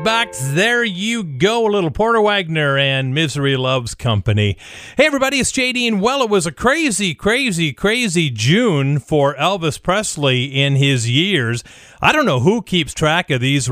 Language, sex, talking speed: English, male, 170 wpm